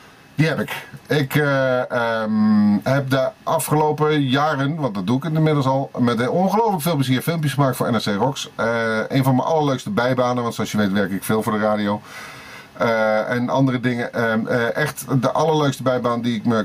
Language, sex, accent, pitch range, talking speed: Dutch, male, Dutch, 110-145 Hz, 195 wpm